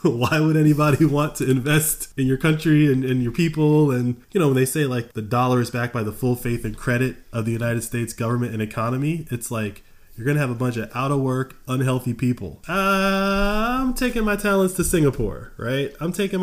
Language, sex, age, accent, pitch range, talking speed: English, male, 20-39, American, 110-145 Hz, 225 wpm